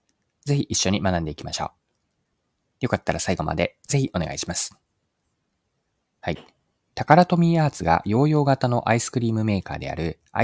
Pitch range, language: 90-130 Hz, Japanese